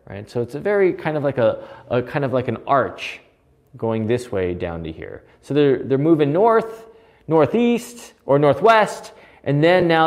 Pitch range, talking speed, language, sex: 105-160 Hz, 190 wpm, English, male